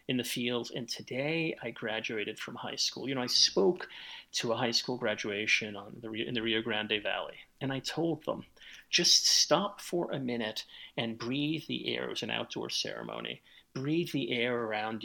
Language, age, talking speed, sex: English, 40-59, 185 wpm, male